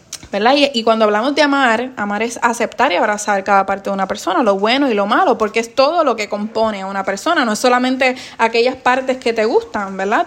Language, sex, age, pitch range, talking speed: Spanish, female, 20-39, 205-255 Hz, 235 wpm